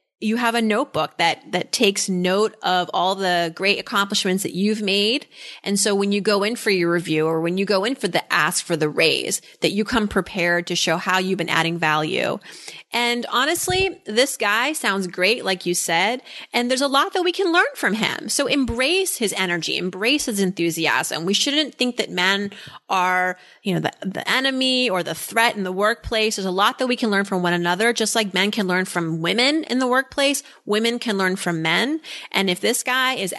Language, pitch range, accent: English, 180-240 Hz, American